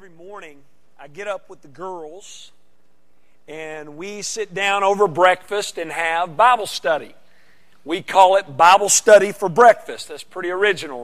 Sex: male